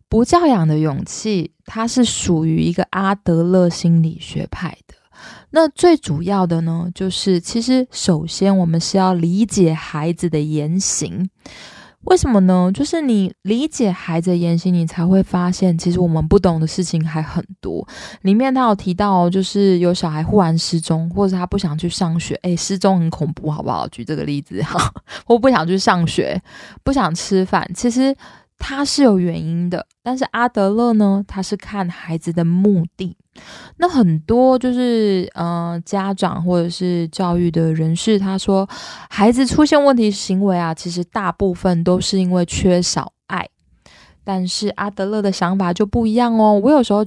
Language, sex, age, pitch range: Chinese, female, 20-39, 175-220 Hz